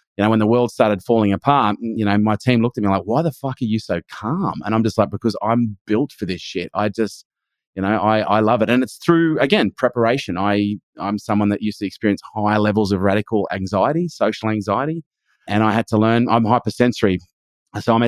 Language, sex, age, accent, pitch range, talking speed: English, male, 30-49, Australian, 105-120 Hz, 225 wpm